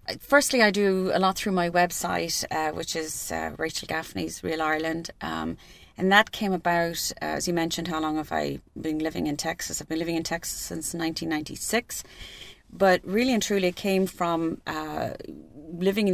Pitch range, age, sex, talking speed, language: 160-185 Hz, 30-49, female, 180 wpm, English